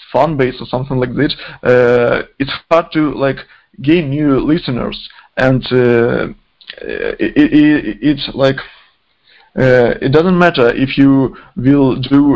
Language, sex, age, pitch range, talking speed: English, male, 20-39, 130-145 Hz, 140 wpm